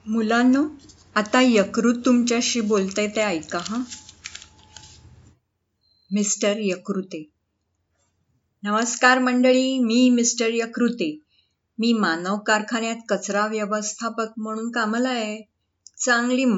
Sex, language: female, Marathi